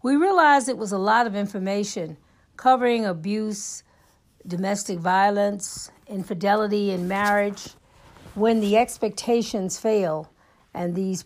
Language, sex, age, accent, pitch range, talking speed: English, female, 50-69, American, 190-220 Hz, 110 wpm